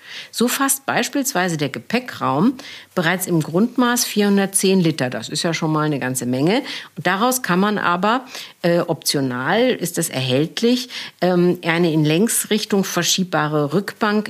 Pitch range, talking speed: 150-205 Hz, 140 wpm